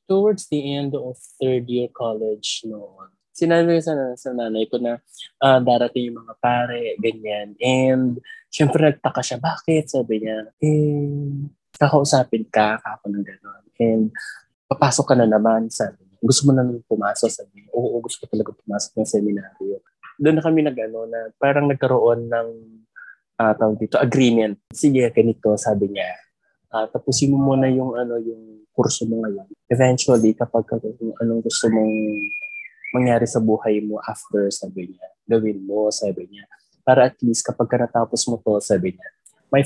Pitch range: 110-145 Hz